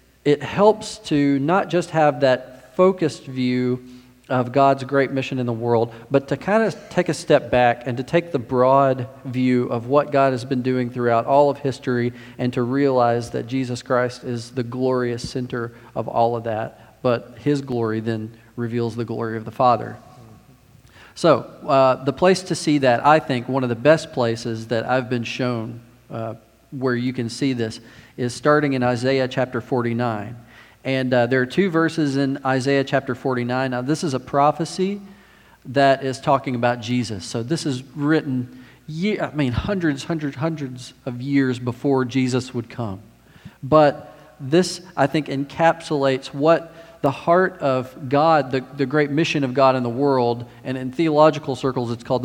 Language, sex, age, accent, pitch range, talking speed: English, male, 40-59, American, 120-145 Hz, 175 wpm